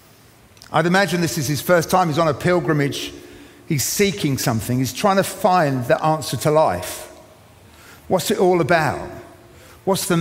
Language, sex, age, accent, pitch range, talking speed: English, male, 50-69, British, 130-175 Hz, 165 wpm